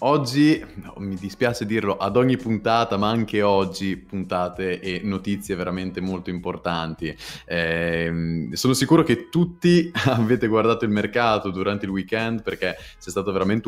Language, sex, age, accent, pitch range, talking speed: Italian, male, 20-39, native, 95-115 Hz, 145 wpm